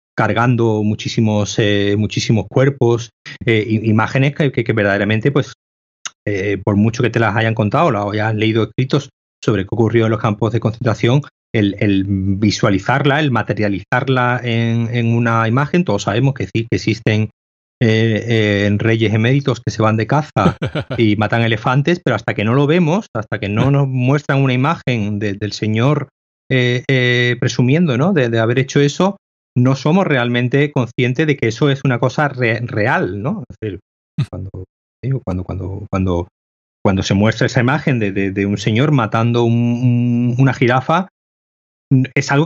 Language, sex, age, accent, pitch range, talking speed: Spanish, male, 30-49, Spanish, 110-140 Hz, 165 wpm